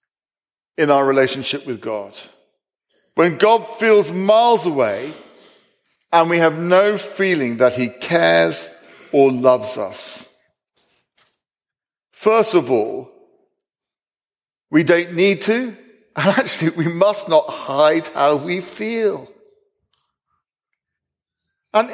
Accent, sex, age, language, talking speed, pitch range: British, male, 50-69, English, 105 wpm, 165-255 Hz